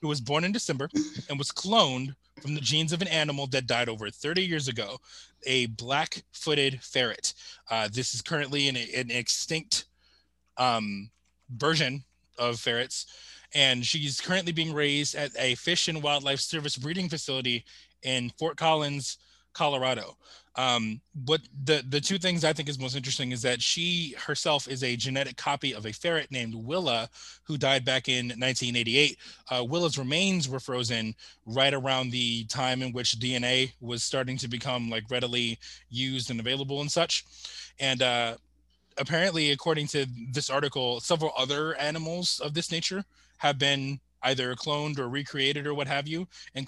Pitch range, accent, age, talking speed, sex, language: 125-155 Hz, American, 20-39, 165 wpm, male, English